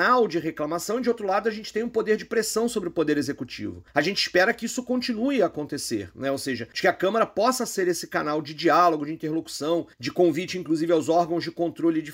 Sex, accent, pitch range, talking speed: male, Brazilian, 160-230 Hz, 235 wpm